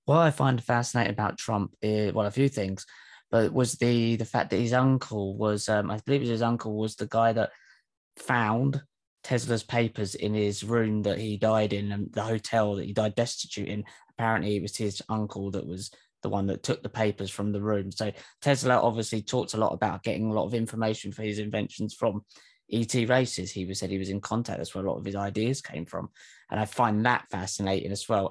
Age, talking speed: 20-39, 225 wpm